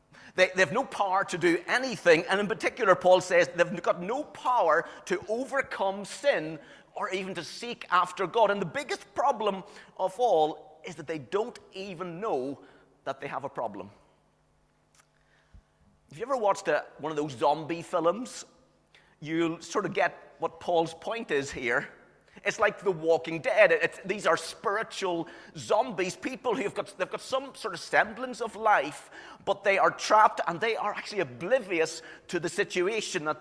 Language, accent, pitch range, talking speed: English, British, 165-220 Hz, 170 wpm